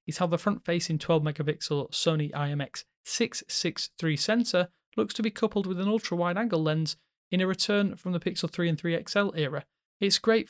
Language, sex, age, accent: English, male, 30-49, British